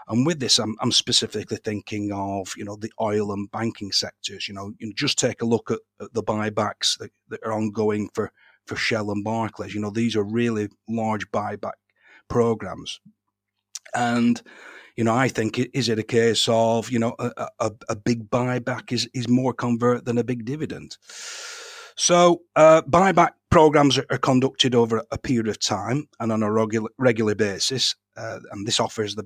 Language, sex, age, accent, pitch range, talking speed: English, male, 40-59, British, 110-130 Hz, 185 wpm